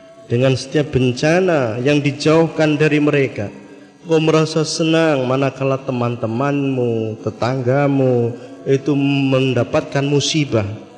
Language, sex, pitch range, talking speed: Indonesian, male, 120-165 Hz, 85 wpm